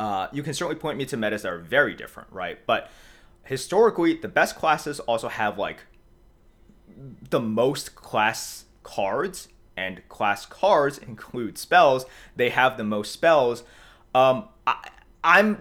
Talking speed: 140 wpm